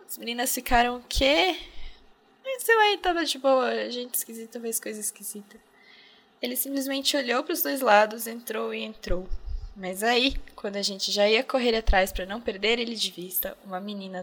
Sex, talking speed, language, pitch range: female, 185 wpm, Portuguese, 195-250 Hz